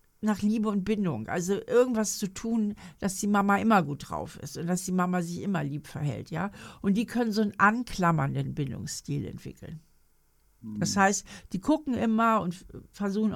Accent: German